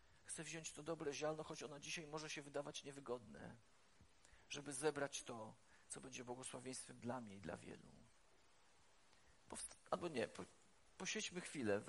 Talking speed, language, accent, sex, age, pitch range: 150 wpm, Polish, native, male, 40-59, 145-190 Hz